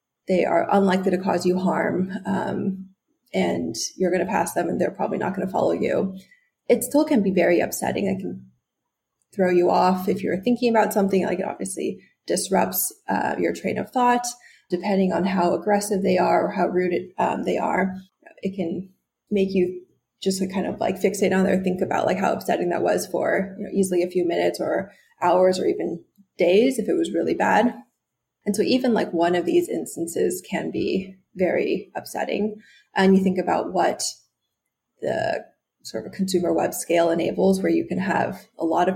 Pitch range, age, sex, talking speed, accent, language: 180-210 Hz, 20-39, female, 190 wpm, American, English